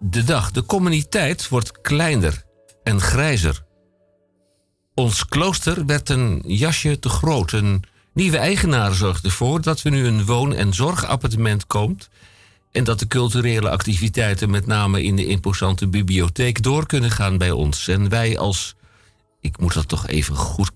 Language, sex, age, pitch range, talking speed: Dutch, male, 50-69, 95-125 Hz, 155 wpm